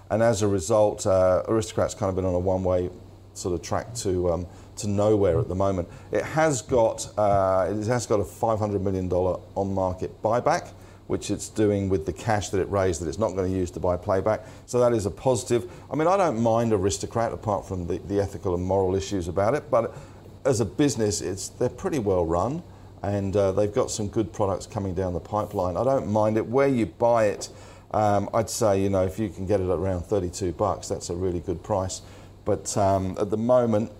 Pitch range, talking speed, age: 95-110 Hz, 220 wpm, 40-59